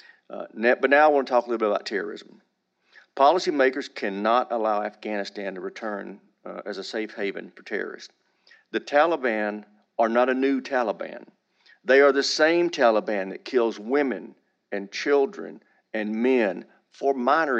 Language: English